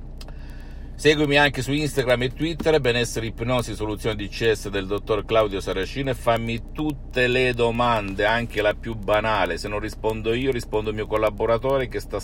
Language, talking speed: Italian, 165 wpm